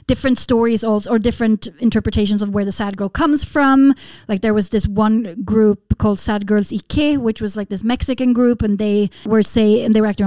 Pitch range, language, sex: 205-235 Hz, Swedish, female